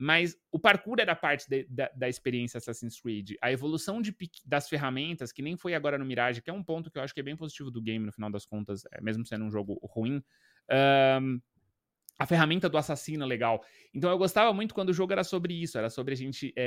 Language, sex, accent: Portuguese, male, Brazilian